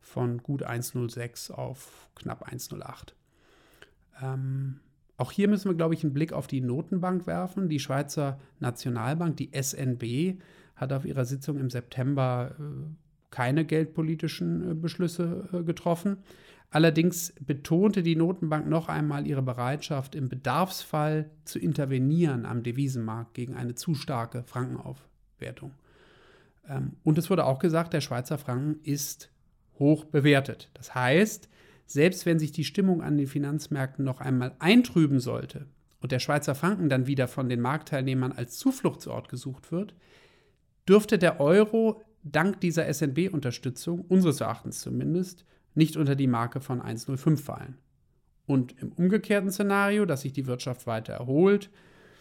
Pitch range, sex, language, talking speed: 130-175 Hz, male, English, 140 wpm